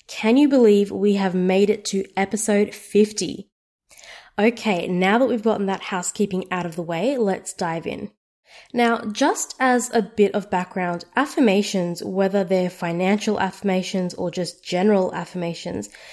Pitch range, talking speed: 190-230 Hz, 150 wpm